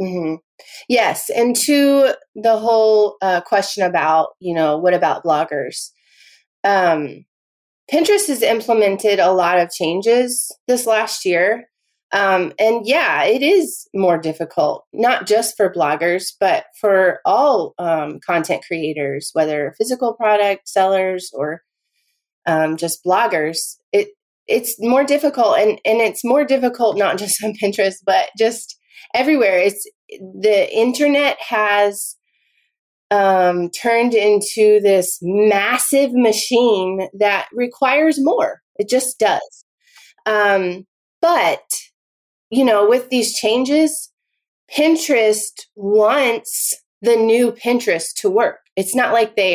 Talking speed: 120 wpm